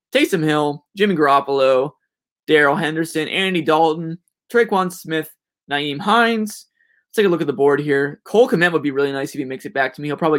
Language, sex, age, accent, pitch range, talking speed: English, male, 20-39, American, 145-190 Hz, 200 wpm